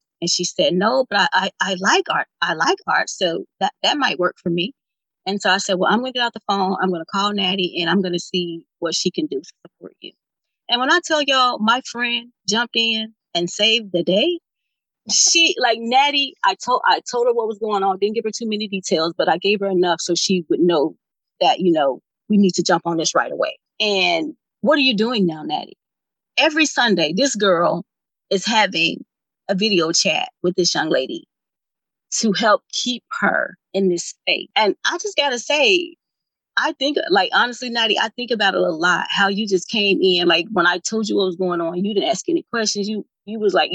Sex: female